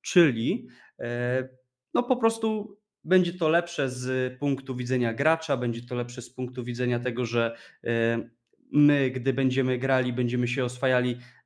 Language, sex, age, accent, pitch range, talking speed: Polish, male, 20-39, native, 125-170 Hz, 130 wpm